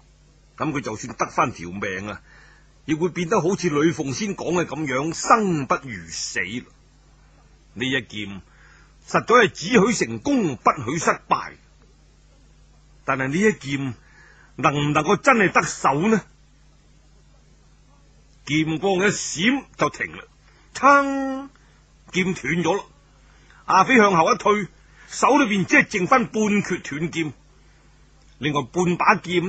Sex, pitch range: male, 135-205 Hz